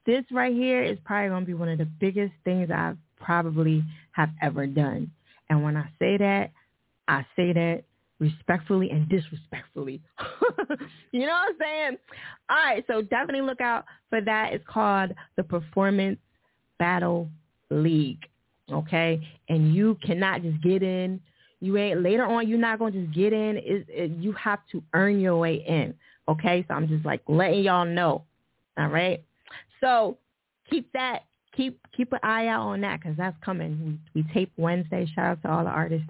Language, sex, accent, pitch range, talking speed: English, female, American, 155-235 Hz, 180 wpm